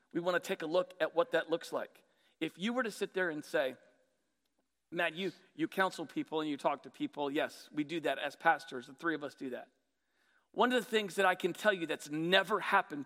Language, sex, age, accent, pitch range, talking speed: English, male, 40-59, American, 165-235 Hz, 245 wpm